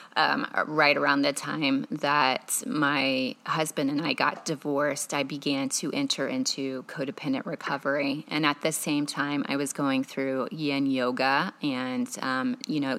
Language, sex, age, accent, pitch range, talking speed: English, female, 20-39, American, 145-180 Hz, 155 wpm